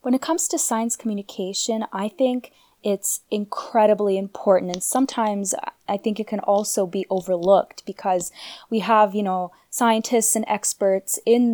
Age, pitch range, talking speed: 10-29, 185-215 Hz, 150 wpm